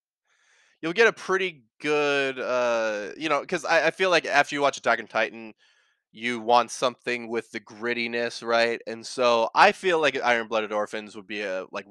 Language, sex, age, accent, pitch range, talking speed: English, male, 20-39, American, 105-130 Hz, 190 wpm